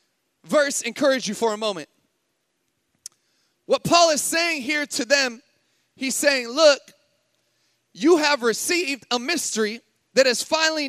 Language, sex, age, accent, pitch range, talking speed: English, male, 30-49, American, 245-305 Hz, 130 wpm